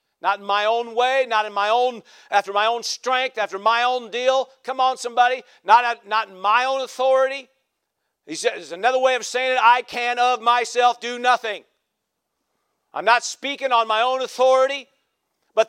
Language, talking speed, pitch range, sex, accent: English, 185 wpm, 230-285 Hz, male, American